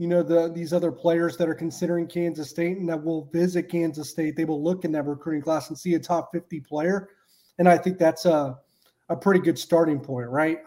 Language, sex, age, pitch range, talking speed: English, male, 30-49, 150-170 Hz, 230 wpm